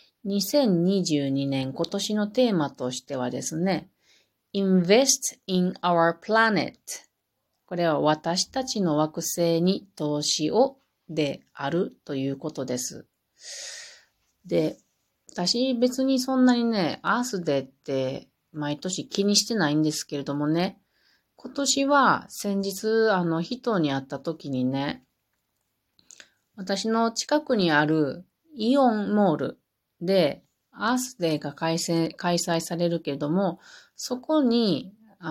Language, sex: Japanese, female